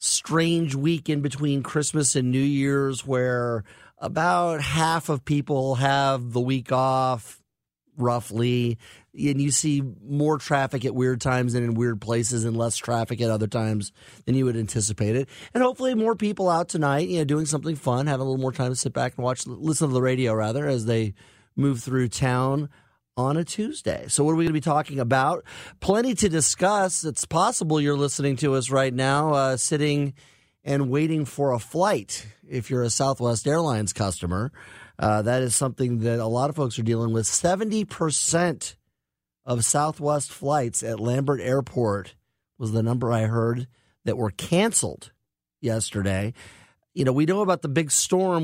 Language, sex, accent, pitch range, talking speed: English, male, American, 120-150 Hz, 180 wpm